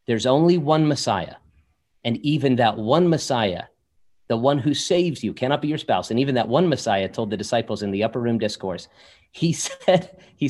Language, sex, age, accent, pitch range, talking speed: English, male, 30-49, American, 110-150 Hz, 195 wpm